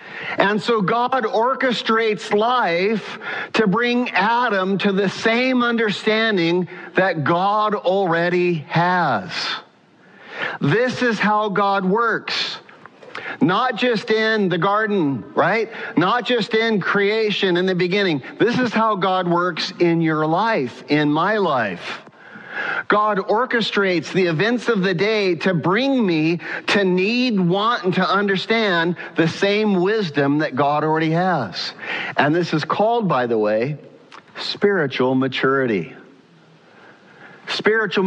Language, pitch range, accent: English, 165-215 Hz, American